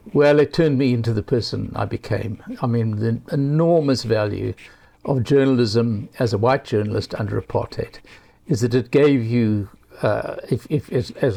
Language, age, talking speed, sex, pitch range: English, 60-79, 170 wpm, male, 110-135 Hz